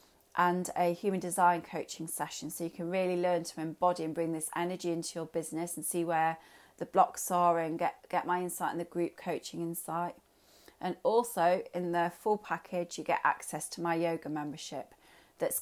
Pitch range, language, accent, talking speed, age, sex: 165-185 Hz, English, British, 190 wpm, 30-49, female